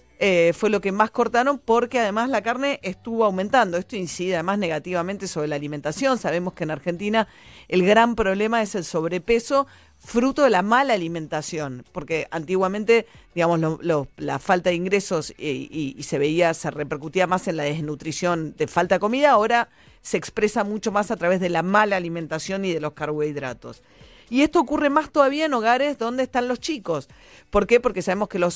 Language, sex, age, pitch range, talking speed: Italian, female, 40-59, 165-220 Hz, 190 wpm